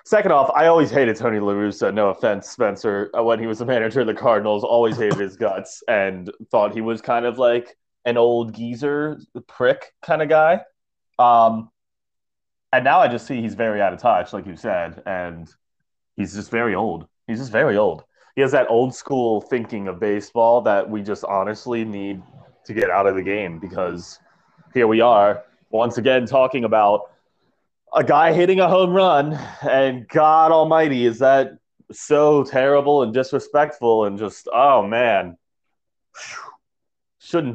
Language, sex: English, male